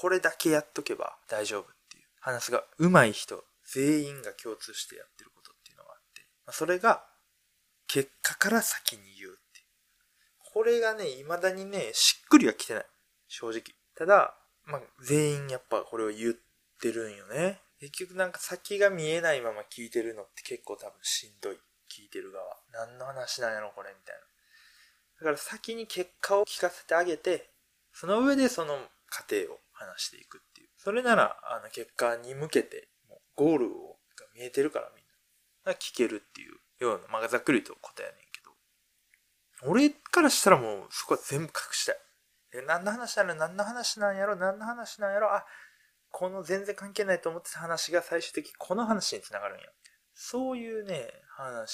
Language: Japanese